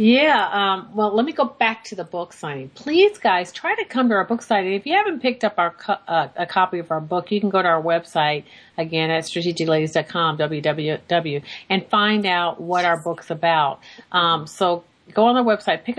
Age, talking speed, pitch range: 40-59, 215 wpm, 160-195 Hz